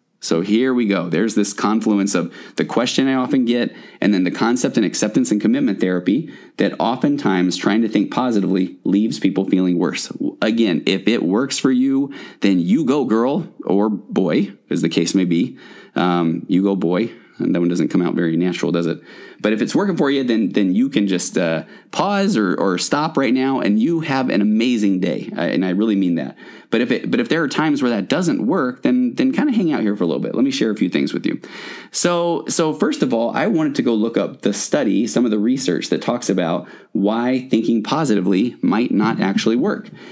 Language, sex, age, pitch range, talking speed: English, male, 30-49, 90-130 Hz, 225 wpm